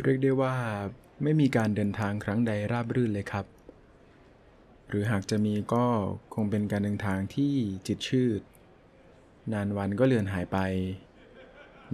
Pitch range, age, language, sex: 95-115 Hz, 20-39, Thai, male